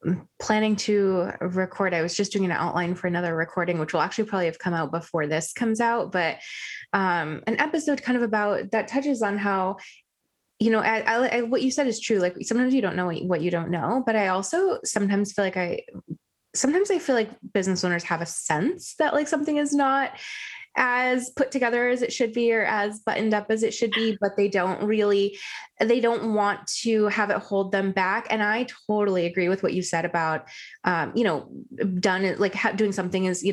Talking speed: 215 wpm